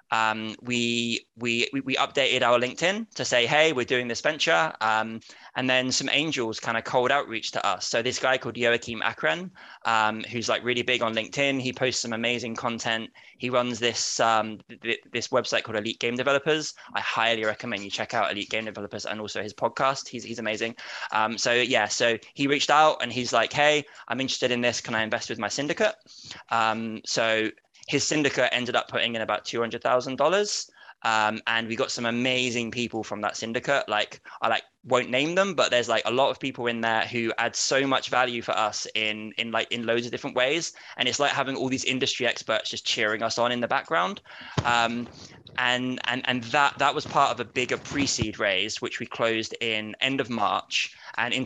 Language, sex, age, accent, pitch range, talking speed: English, male, 20-39, British, 110-130 Hz, 210 wpm